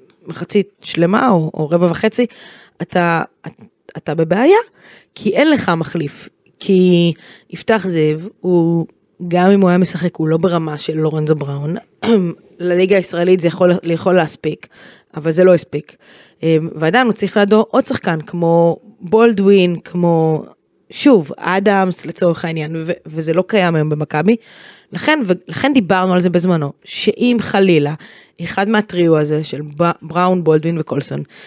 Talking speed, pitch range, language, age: 140 wpm, 160-200 Hz, Hebrew, 20-39